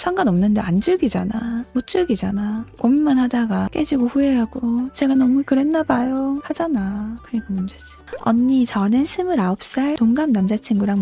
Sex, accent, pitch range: female, native, 205-255 Hz